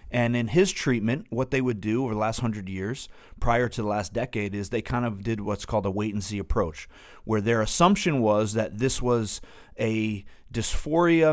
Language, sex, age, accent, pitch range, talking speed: English, male, 30-49, American, 105-125 Hz, 205 wpm